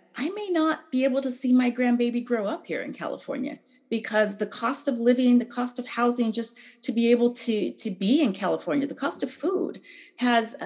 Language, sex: English, female